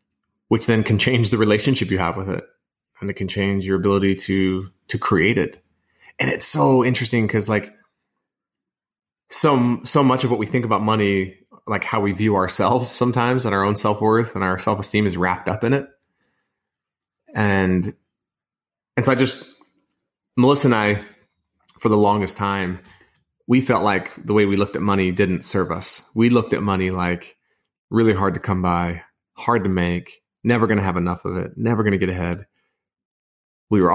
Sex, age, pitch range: male, 30-49, 95-115 Hz